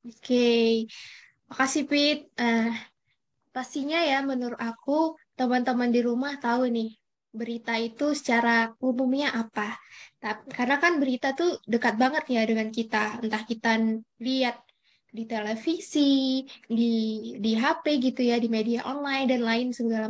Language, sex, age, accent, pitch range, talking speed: Indonesian, female, 10-29, native, 230-275 Hz, 130 wpm